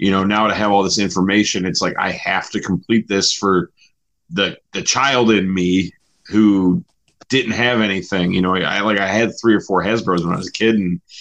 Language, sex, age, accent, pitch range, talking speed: English, male, 30-49, American, 90-110 Hz, 220 wpm